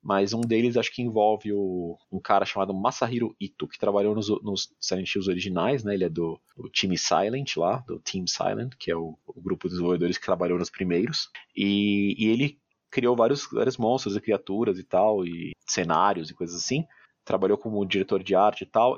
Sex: male